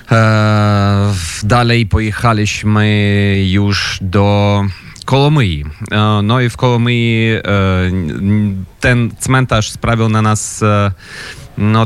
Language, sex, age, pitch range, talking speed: Polish, male, 30-49, 95-110 Hz, 75 wpm